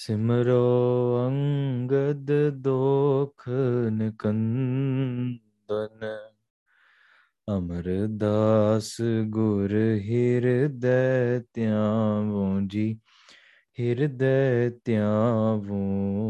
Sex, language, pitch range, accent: male, English, 105-125 Hz, Indian